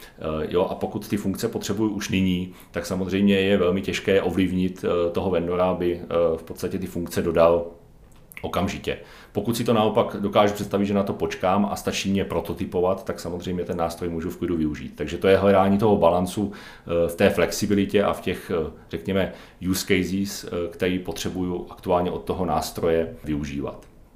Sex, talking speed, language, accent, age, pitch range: male, 165 wpm, Czech, native, 40-59, 90-100 Hz